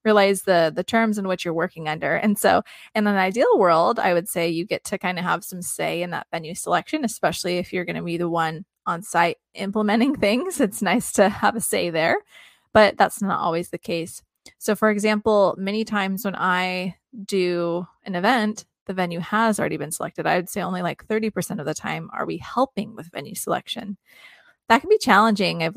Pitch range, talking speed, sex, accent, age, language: 175-210 Hz, 210 wpm, female, American, 20-39, English